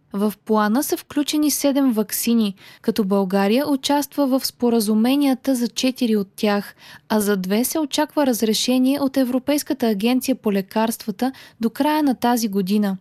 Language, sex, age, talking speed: Bulgarian, female, 20-39, 145 wpm